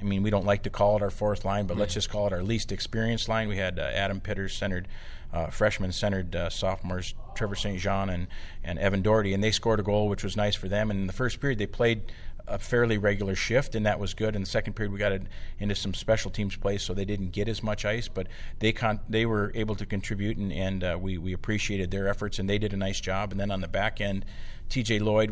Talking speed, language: 265 wpm, English